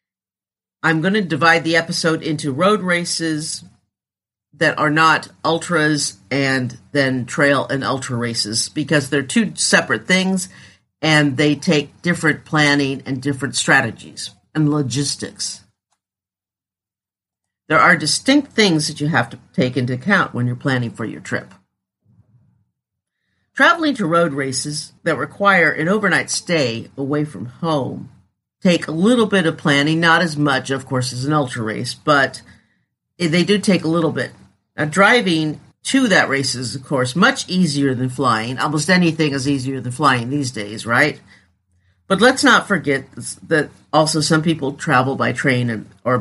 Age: 50-69